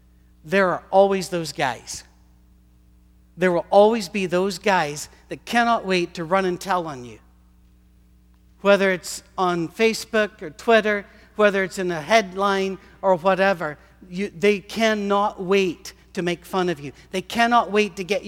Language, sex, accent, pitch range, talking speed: English, male, American, 130-200 Hz, 150 wpm